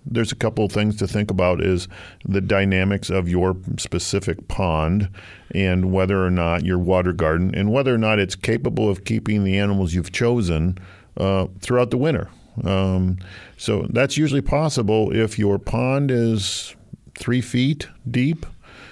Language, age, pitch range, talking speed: English, 50-69, 95-110 Hz, 160 wpm